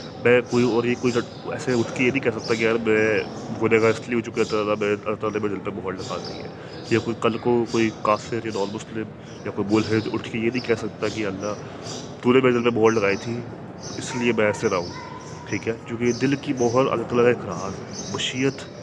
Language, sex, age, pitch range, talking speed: Urdu, male, 30-49, 105-120 Hz, 220 wpm